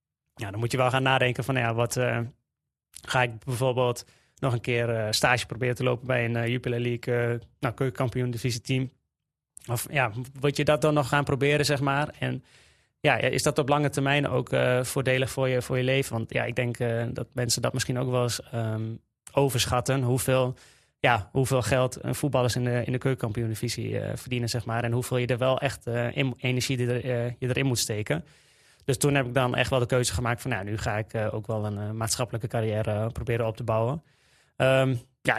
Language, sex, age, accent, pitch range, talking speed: Dutch, male, 20-39, Dutch, 115-135 Hz, 220 wpm